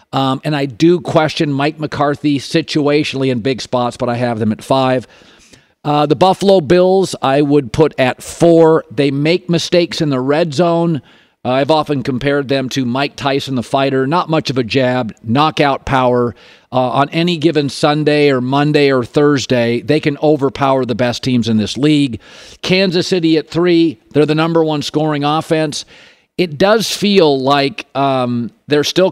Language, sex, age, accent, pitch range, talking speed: English, male, 50-69, American, 135-165 Hz, 175 wpm